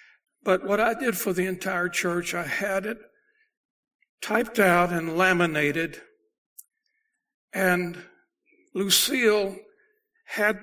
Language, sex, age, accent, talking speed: English, male, 60-79, American, 100 wpm